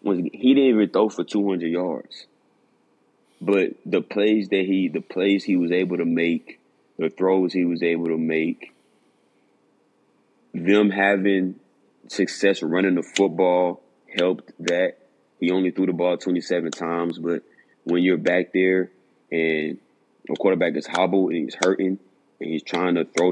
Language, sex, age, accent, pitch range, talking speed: English, male, 20-39, American, 85-95 Hz, 150 wpm